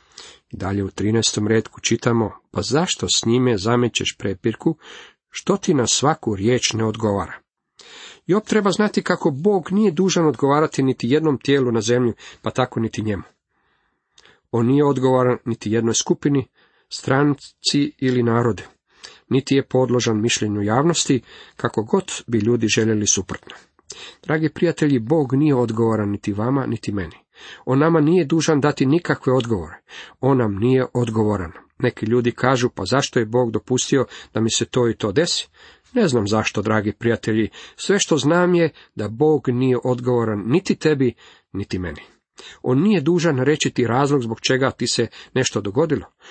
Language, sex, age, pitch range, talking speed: Croatian, male, 40-59, 110-145 Hz, 155 wpm